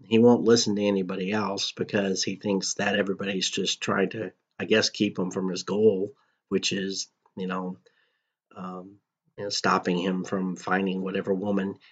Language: English